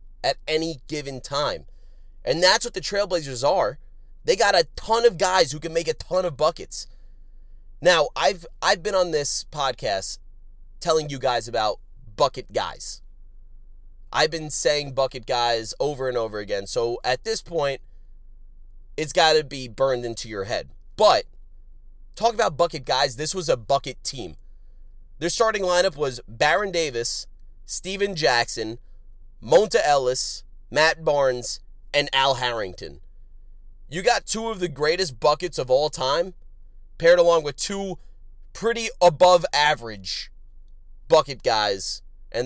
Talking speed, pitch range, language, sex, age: 145 wpm, 120-195 Hz, English, male, 30-49